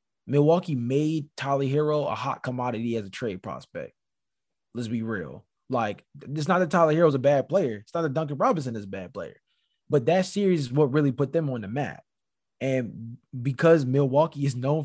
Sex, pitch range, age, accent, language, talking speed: male, 140-190 Hz, 20-39, American, English, 195 wpm